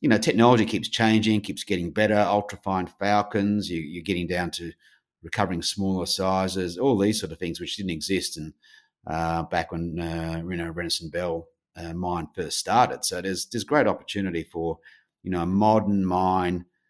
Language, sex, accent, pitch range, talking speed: English, male, Australian, 85-100 Hz, 180 wpm